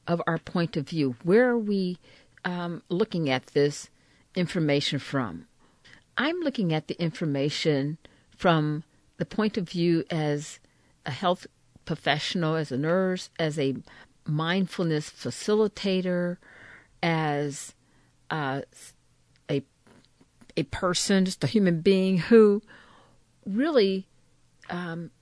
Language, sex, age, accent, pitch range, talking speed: English, female, 50-69, American, 150-195 Hz, 110 wpm